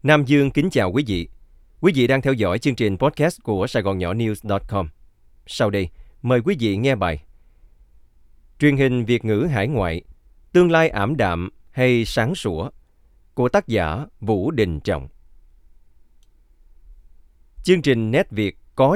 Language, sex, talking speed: Vietnamese, male, 160 wpm